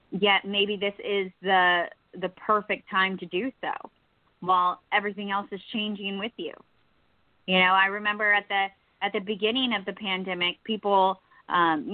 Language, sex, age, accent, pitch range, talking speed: English, female, 20-39, American, 180-205 Hz, 160 wpm